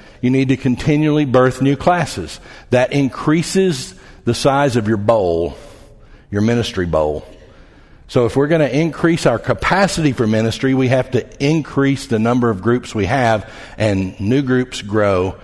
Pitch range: 110-140 Hz